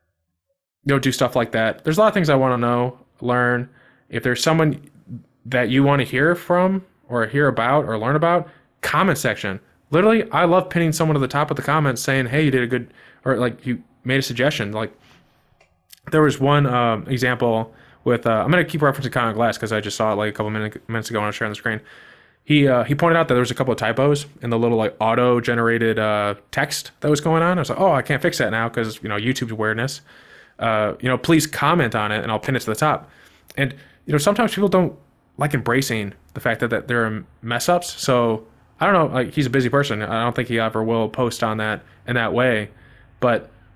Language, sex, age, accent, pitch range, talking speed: English, male, 20-39, American, 115-150 Hz, 245 wpm